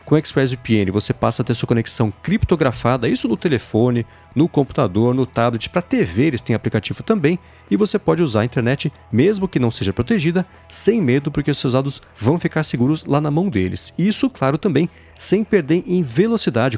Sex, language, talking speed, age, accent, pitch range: male, Portuguese, 195 wpm, 40-59, Brazilian, 115-155 Hz